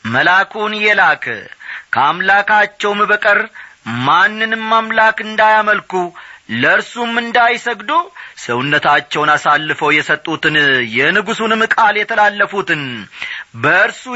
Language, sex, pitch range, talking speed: Amharic, male, 185-225 Hz, 70 wpm